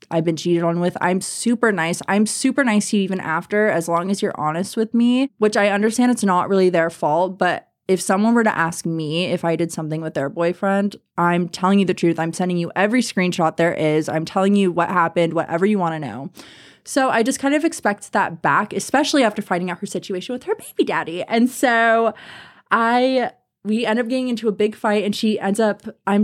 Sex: female